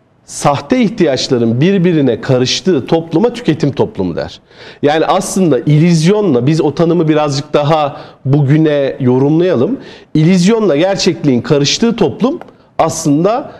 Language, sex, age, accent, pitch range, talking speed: Turkish, male, 40-59, native, 150-200 Hz, 100 wpm